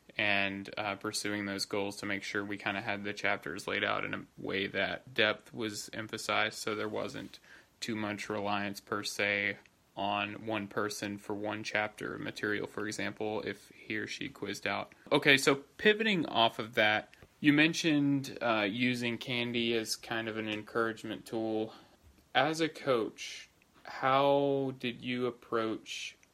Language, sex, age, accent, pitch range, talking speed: English, male, 20-39, American, 105-125 Hz, 160 wpm